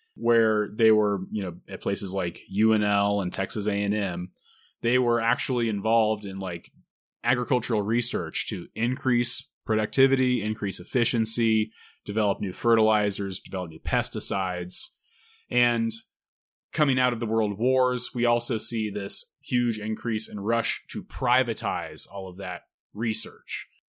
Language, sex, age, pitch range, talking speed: English, male, 30-49, 100-125 Hz, 130 wpm